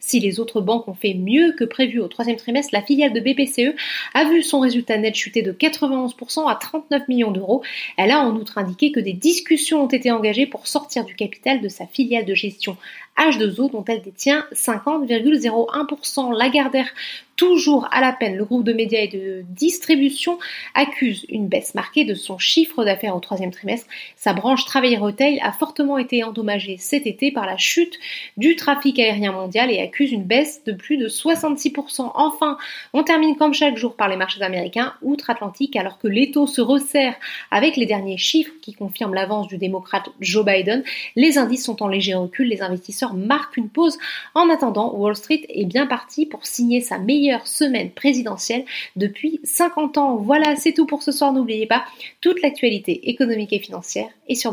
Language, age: French, 30-49